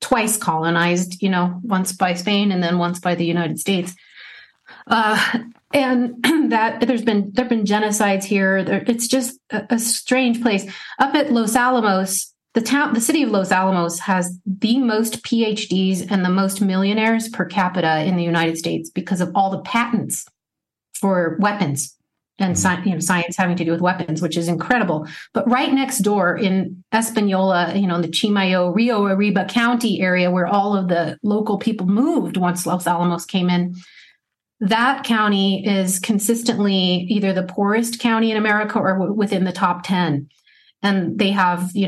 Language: English